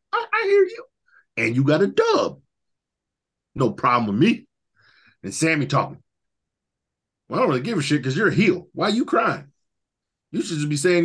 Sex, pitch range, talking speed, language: male, 140-180 Hz, 190 wpm, English